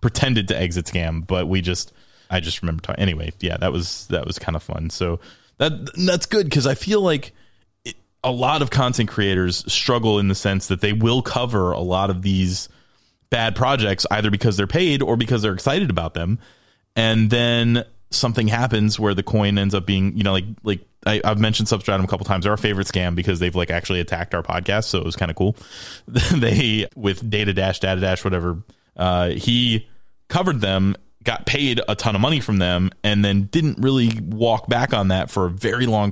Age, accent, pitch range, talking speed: 20-39, American, 95-115 Hz, 215 wpm